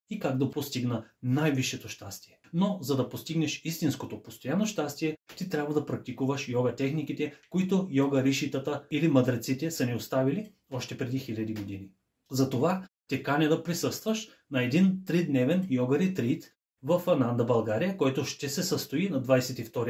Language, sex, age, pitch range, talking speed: English, male, 30-49, 125-160 Hz, 150 wpm